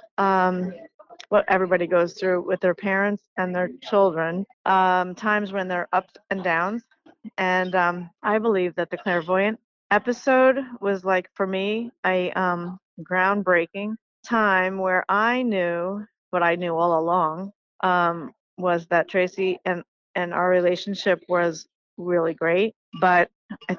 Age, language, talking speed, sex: 30-49, English, 140 wpm, female